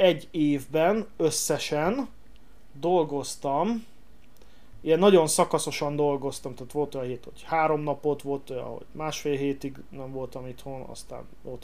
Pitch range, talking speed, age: 140-175 Hz, 130 wpm, 30-49